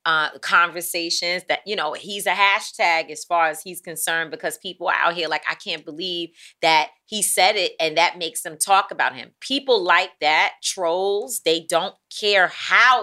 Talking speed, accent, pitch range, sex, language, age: 185 wpm, American, 180-255 Hz, female, English, 30-49